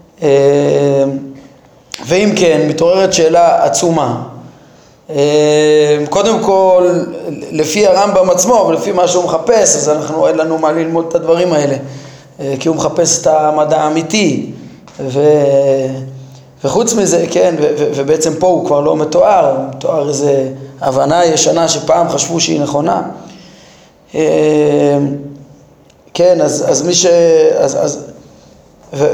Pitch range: 150-185 Hz